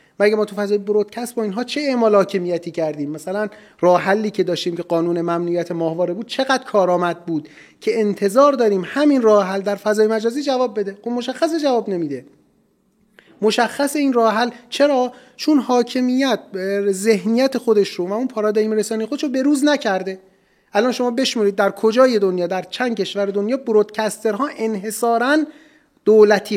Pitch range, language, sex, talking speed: 195-250 Hz, Persian, male, 155 wpm